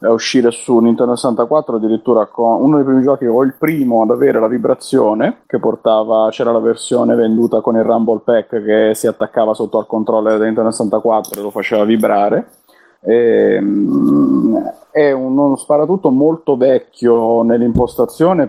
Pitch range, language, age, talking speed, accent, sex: 105-120 Hz, Italian, 30-49, 155 wpm, native, male